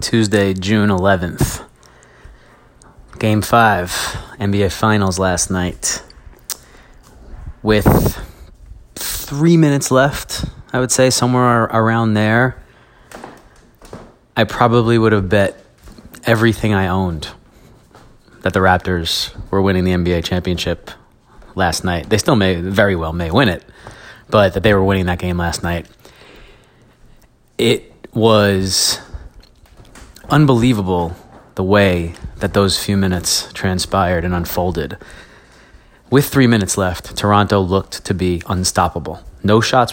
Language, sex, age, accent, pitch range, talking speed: English, male, 30-49, American, 90-110 Hz, 115 wpm